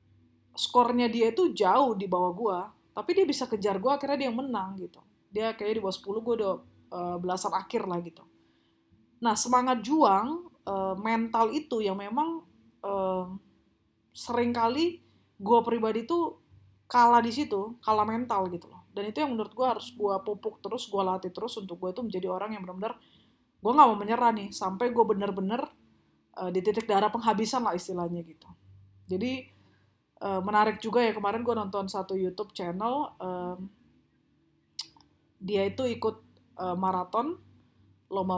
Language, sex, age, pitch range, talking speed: Indonesian, female, 20-39, 185-235 Hz, 160 wpm